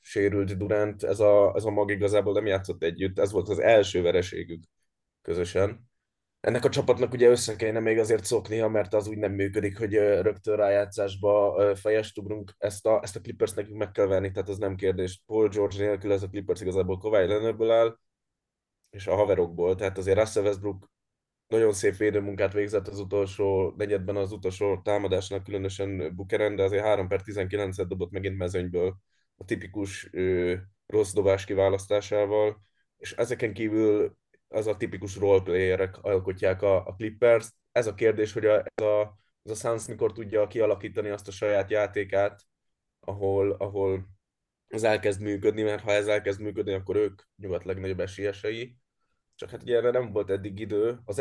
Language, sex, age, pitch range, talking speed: Hungarian, male, 20-39, 95-110 Hz, 165 wpm